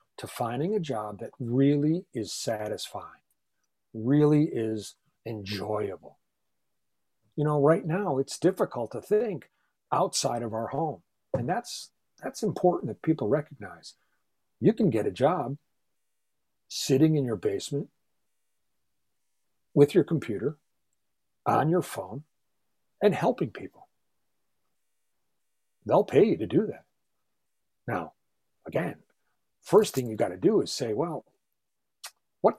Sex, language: male, English